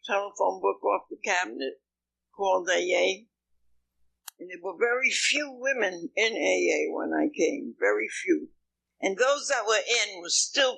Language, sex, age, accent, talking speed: English, female, 60-79, American, 150 wpm